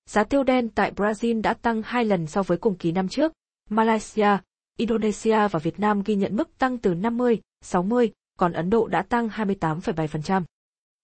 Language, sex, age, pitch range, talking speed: Vietnamese, female, 20-39, 185-235 Hz, 180 wpm